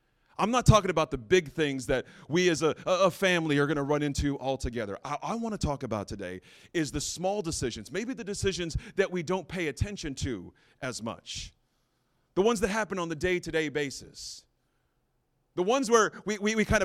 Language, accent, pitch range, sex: English, American, 140-195 Hz, male